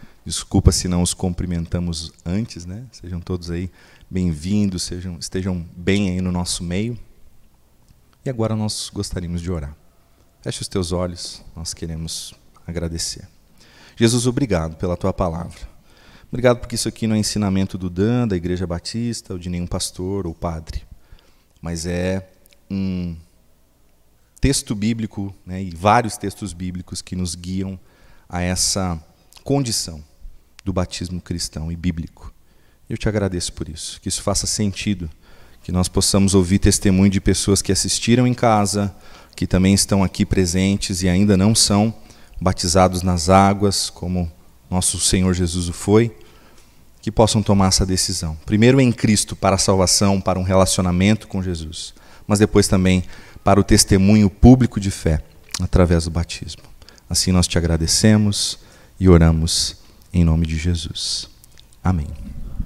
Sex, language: male, Portuguese